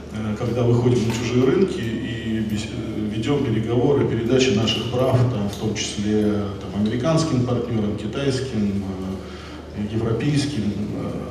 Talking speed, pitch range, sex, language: 105 wpm, 100-125 Hz, male, Russian